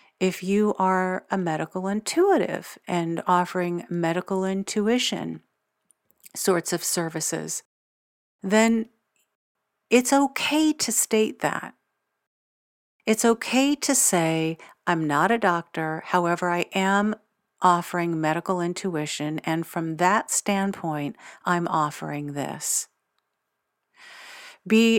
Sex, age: female, 50-69